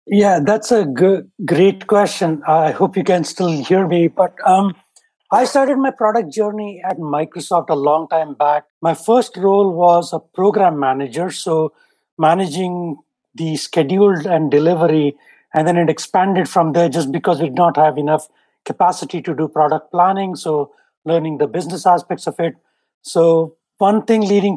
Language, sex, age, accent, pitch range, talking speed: English, male, 60-79, Indian, 155-190 Hz, 165 wpm